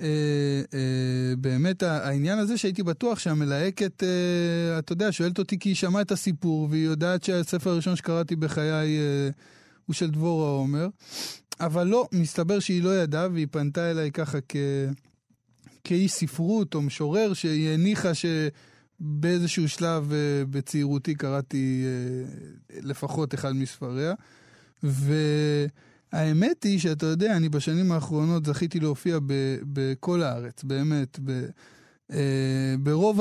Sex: male